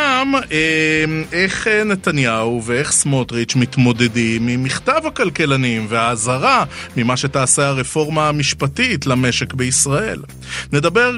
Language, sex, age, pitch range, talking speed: Hebrew, male, 30-49, 125-160 Hz, 90 wpm